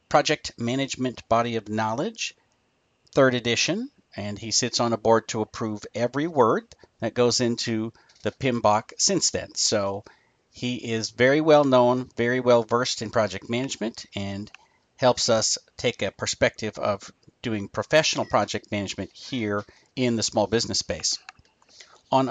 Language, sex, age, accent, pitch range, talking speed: English, male, 50-69, American, 110-130 Hz, 145 wpm